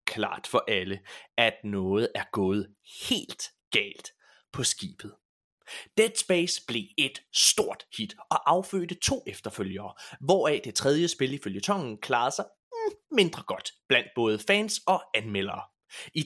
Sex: male